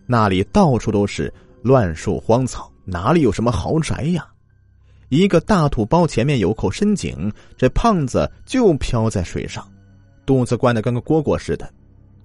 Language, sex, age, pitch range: Chinese, male, 30-49, 95-120 Hz